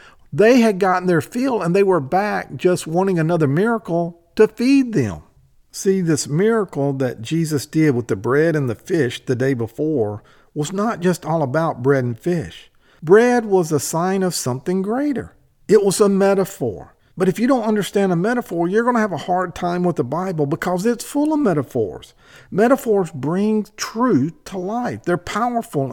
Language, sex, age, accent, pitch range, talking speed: English, male, 50-69, American, 145-195 Hz, 185 wpm